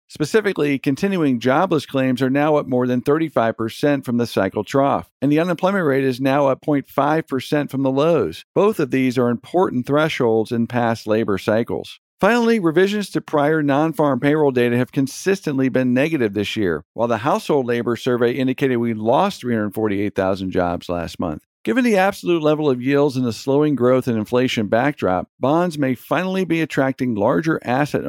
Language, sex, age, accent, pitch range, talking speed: English, male, 50-69, American, 120-150 Hz, 170 wpm